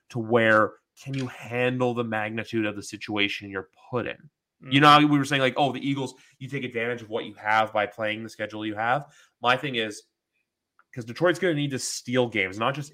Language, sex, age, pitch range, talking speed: English, male, 20-39, 110-130 Hz, 225 wpm